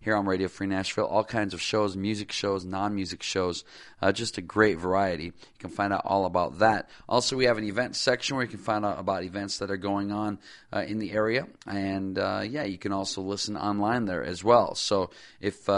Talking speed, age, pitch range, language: 225 wpm, 40-59, 95-110 Hz, English